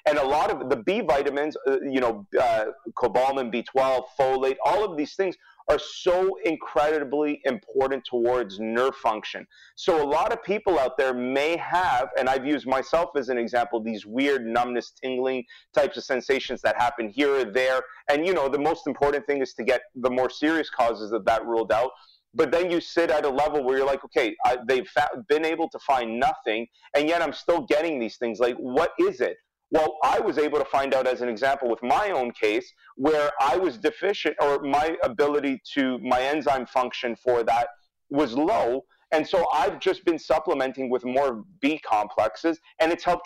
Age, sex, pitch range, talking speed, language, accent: 30-49, male, 125-160 Hz, 195 wpm, English, American